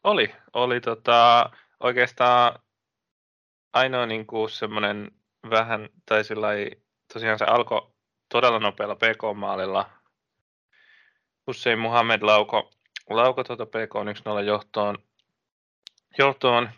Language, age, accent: Finnish, 20-39, native